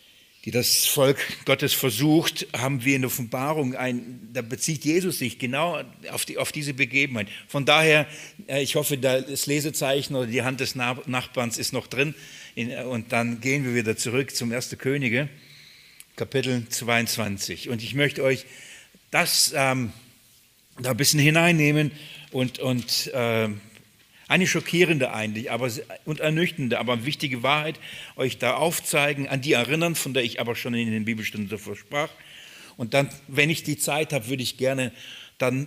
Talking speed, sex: 160 wpm, male